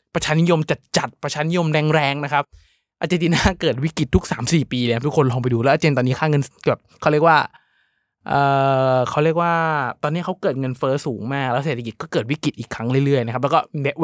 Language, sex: Thai, male